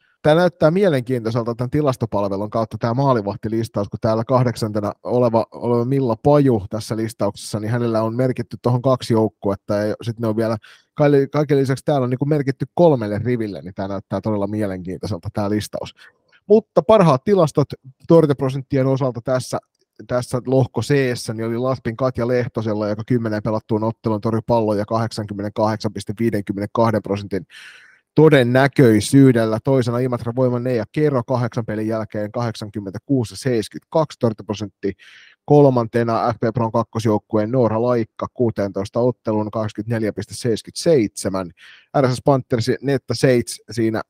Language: Finnish